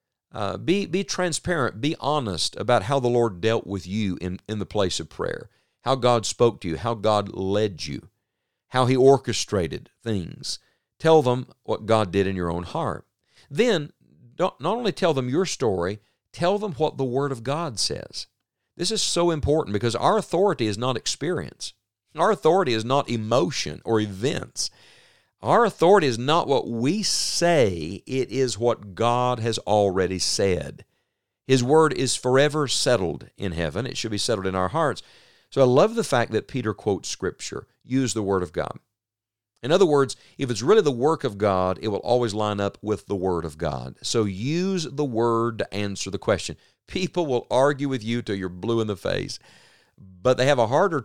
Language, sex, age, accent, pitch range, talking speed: English, male, 50-69, American, 100-140 Hz, 190 wpm